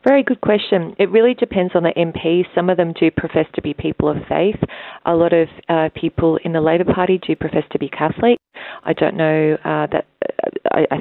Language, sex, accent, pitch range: English, female, Australian, 150-170 Hz